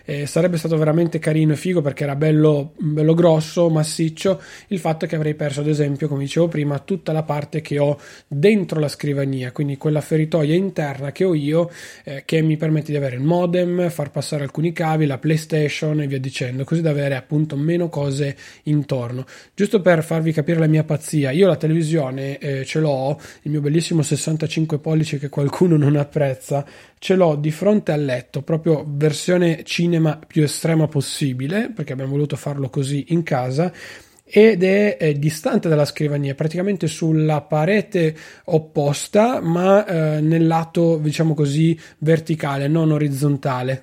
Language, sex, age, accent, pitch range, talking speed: Italian, male, 20-39, native, 145-165 Hz, 170 wpm